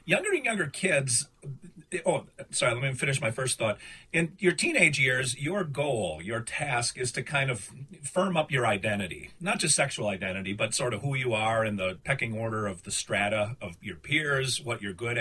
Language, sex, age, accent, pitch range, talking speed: English, male, 40-59, American, 120-165 Hz, 200 wpm